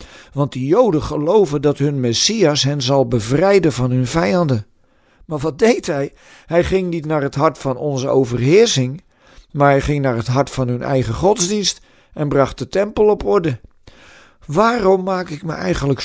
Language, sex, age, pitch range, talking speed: Dutch, male, 50-69, 130-170 Hz, 175 wpm